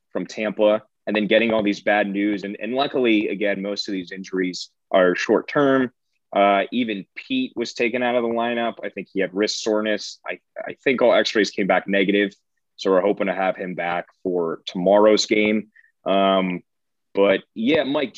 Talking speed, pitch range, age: 185 wpm, 100-110 Hz, 30-49